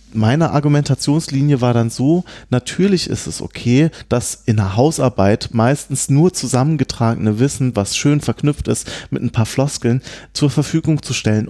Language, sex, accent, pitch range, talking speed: German, male, German, 115-150 Hz, 150 wpm